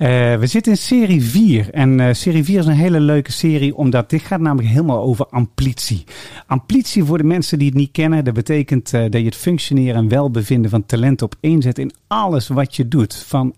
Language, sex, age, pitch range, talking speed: Dutch, male, 40-59, 115-160 Hz, 215 wpm